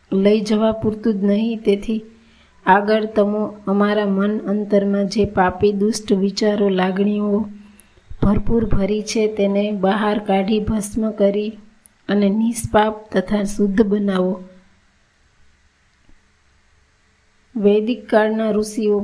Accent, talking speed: native, 35 wpm